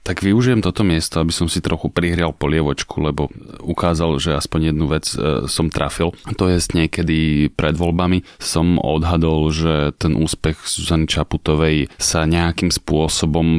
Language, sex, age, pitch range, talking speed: Slovak, male, 30-49, 80-85 Hz, 145 wpm